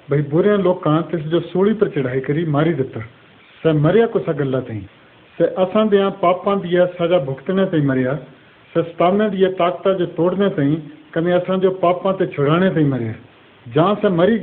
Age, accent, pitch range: 50-69, native, 145-185 Hz